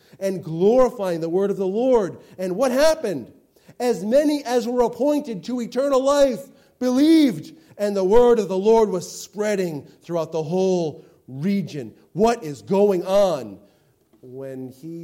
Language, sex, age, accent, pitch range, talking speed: English, male, 40-59, American, 130-215 Hz, 150 wpm